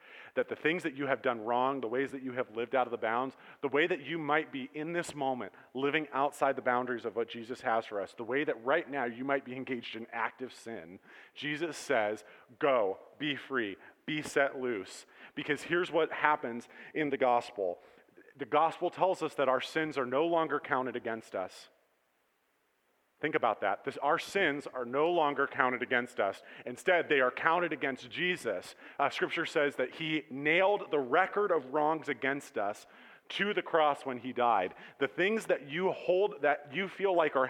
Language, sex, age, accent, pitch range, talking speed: English, male, 30-49, American, 115-155 Hz, 195 wpm